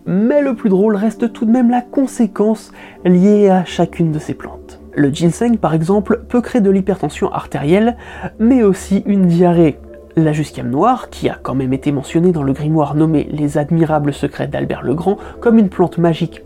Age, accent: 20-39, French